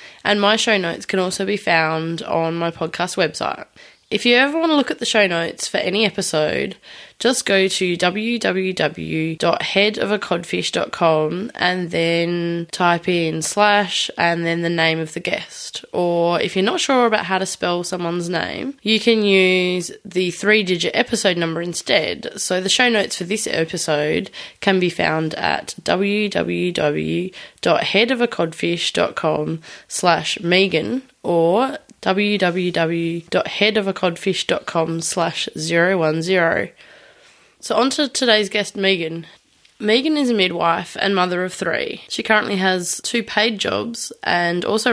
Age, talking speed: 20-39, 135 wpm